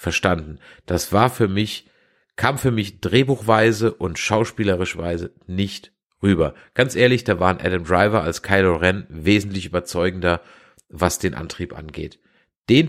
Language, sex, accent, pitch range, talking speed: German, male, German, 95-120 Hz, 135 wpm